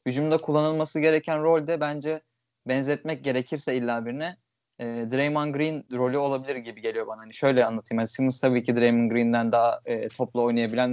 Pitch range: 120-145 Hz